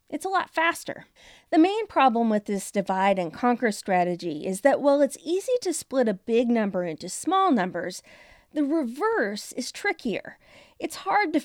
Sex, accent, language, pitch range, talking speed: female, American, English, 210-295 Hz, 175 wpm